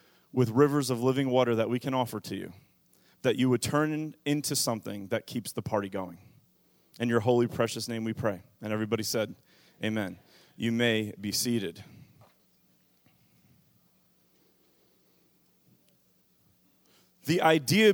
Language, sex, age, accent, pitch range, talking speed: English, male, 30-49, American, 120-170 Hz, 130 wpm